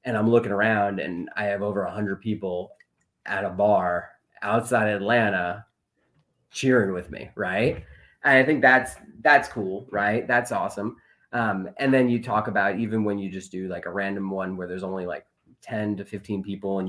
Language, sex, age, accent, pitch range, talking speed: English, male, 30-49, American, 95-120 Hz, 190 wpm